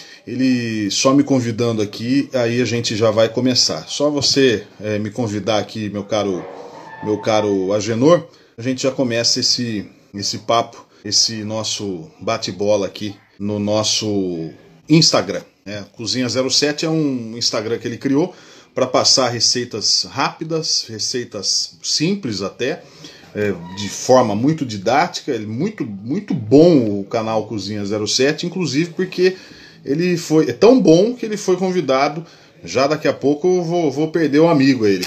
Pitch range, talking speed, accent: 110-145 Hz, 140 wpm, Brazilian